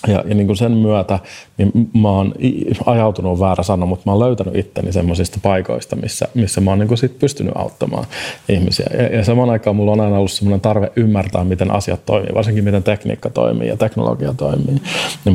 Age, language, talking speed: 30-49, Finnish, 170 wpm